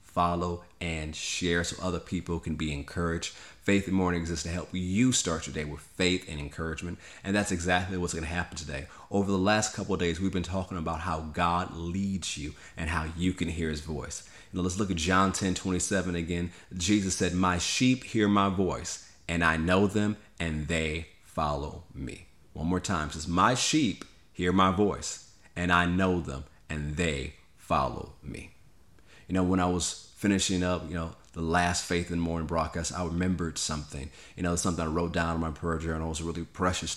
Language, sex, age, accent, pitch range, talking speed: English, male, 30-49, American, 80-90 Hz, 200 wpm